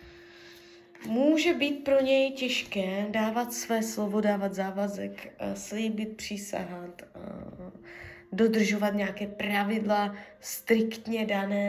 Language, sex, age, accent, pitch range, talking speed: Czech, female, 20-39, native, 195-220 Hz, 85 wpm